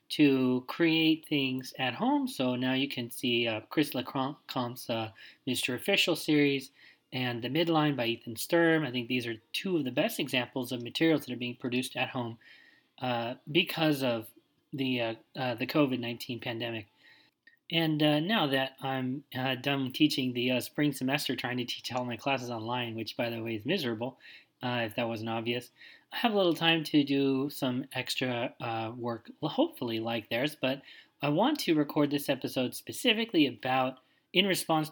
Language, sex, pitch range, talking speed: English, male, 125-155 Hz, 175 wpm